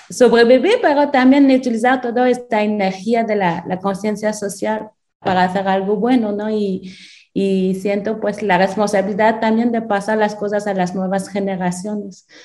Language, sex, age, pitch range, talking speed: Spanish, female, 30-49, 185-225 Hz, 155 wpm